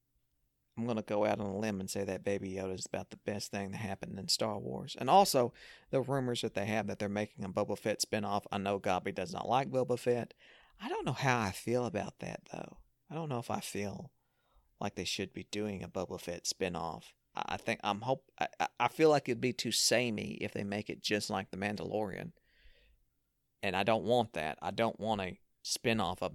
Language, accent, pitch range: English, American, 95-120 Hz